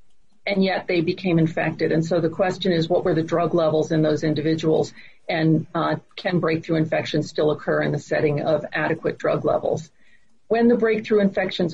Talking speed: 185 wpm